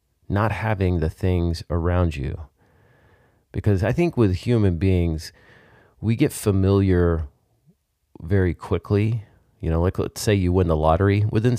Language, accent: English, American